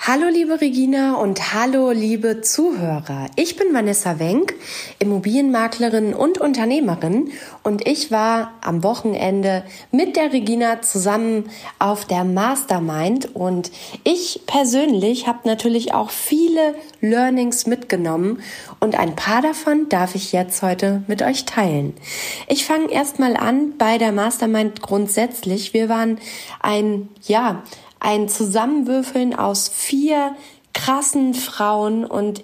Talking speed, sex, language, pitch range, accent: 120 wpm, female, German, 210-260 Hz, German